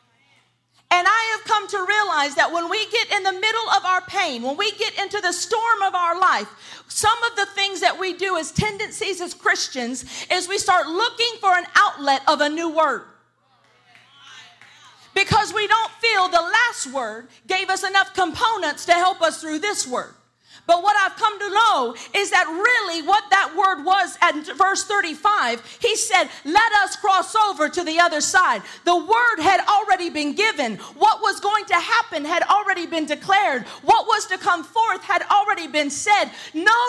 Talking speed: 185 wpm